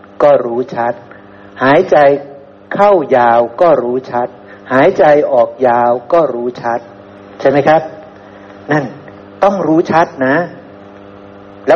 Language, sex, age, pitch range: Thai, male, 60-79, 100-150 Hz